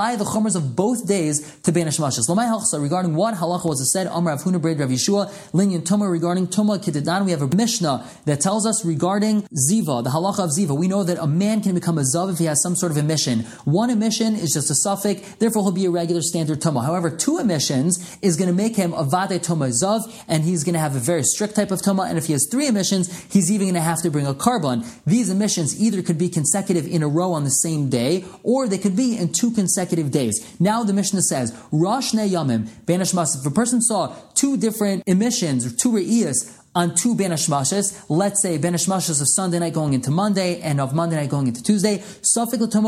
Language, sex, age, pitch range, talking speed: English, male, 30-49, 160-205 Hz, 225 wpm